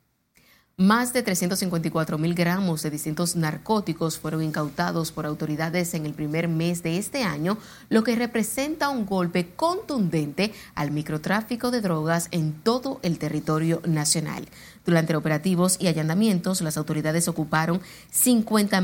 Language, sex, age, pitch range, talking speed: Spanish, female, 30-49, 165-215 Hz, 135 wpm